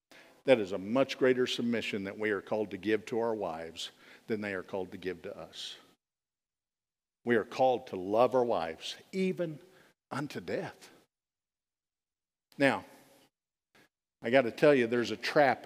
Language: English